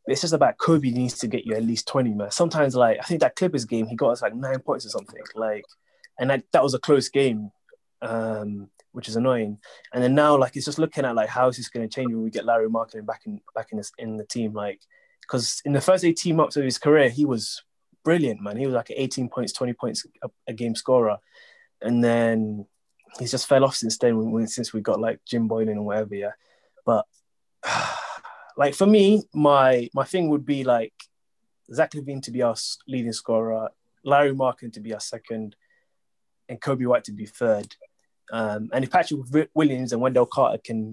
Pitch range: 110-145 Hz